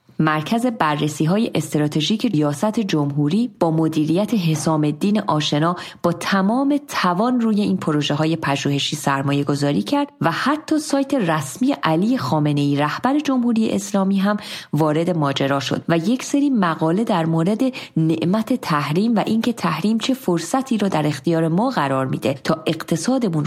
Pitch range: 155-235 Hz